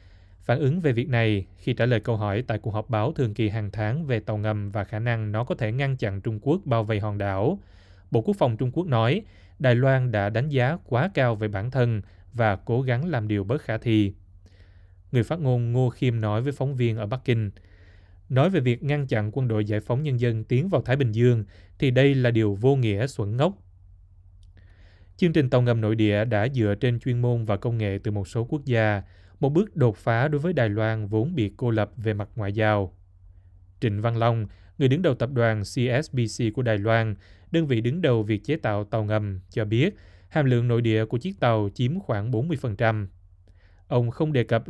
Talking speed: 225 wpm